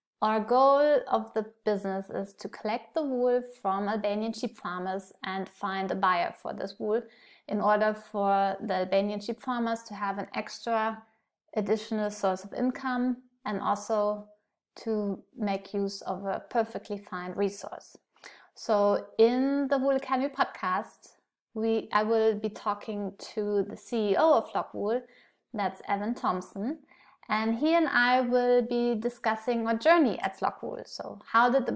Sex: female